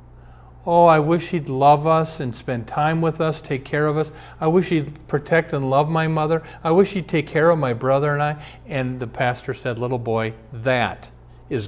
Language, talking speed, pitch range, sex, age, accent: English, 210 wpm, 110-145 Hz, male, 40-59, American